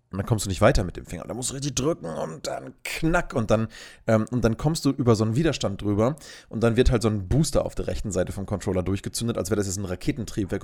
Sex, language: male, German